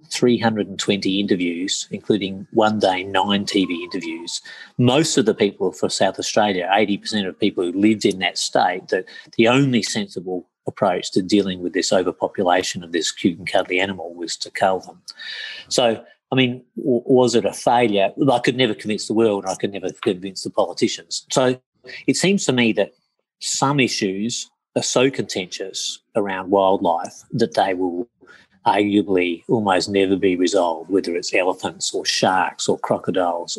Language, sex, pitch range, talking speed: English, male, 95-125 Hz, 165 wpm